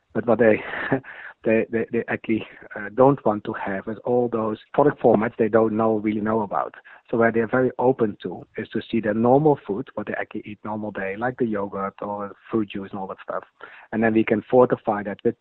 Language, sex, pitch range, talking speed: English, male, 100-120 Hz, 225 wpm